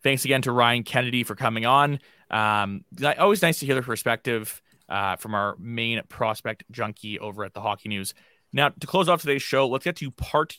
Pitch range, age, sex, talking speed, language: 110-130 Hz, 20-39, male, 205 wpm, English